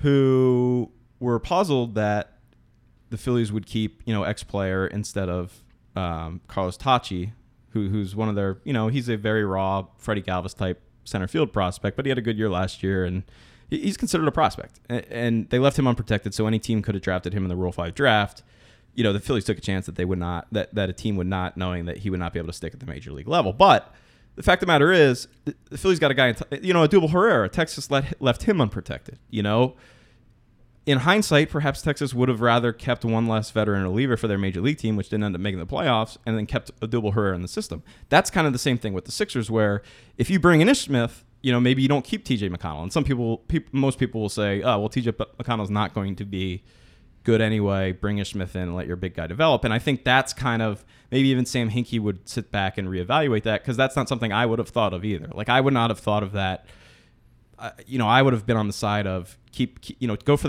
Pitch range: 100-125 Hz